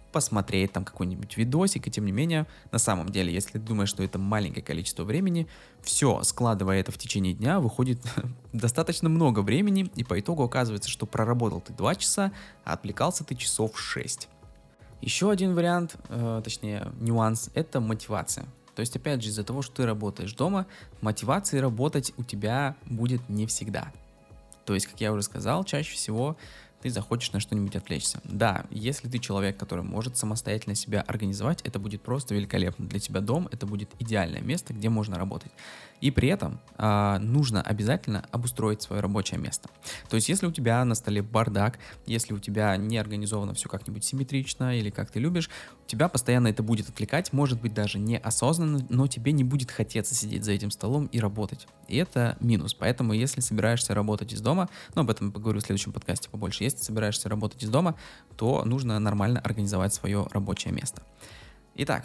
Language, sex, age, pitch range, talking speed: Russian, male, 20-39, 105-130 Hz, 180 wpm